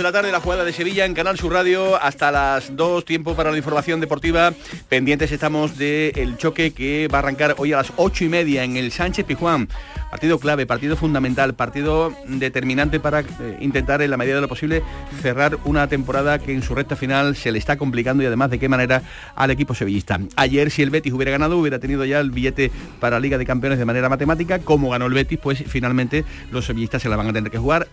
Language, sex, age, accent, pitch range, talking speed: Spanish, male, 40-59, Spanish, 130-165 Hz, 230 wpm